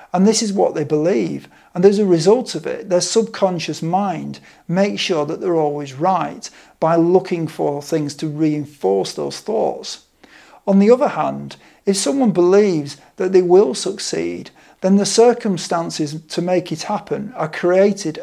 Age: 50-69